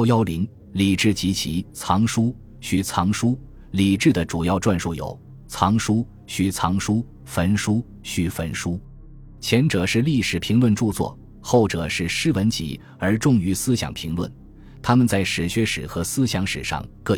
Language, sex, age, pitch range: Chinese, male, 20-39, 90-115 Hz